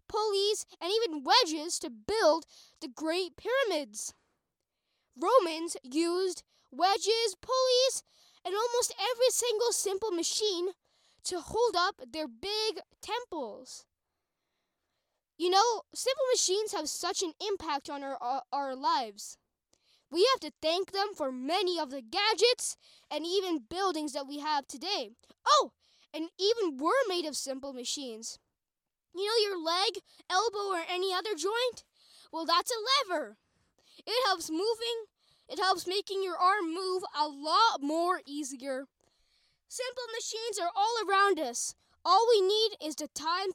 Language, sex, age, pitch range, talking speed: English, female, 10-29, 305-425 Hz, 140 wpm